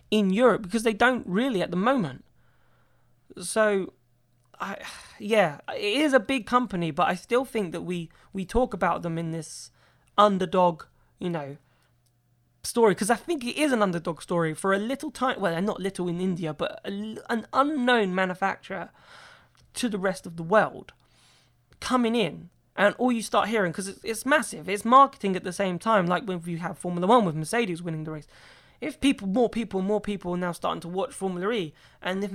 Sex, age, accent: male, 20-39, British